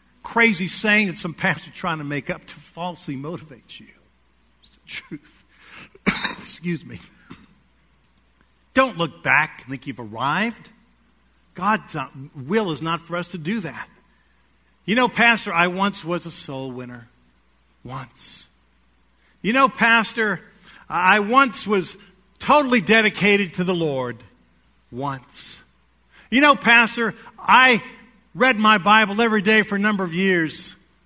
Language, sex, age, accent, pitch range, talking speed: English, male, 50-69, American, 135-215 Hz, 135 wpm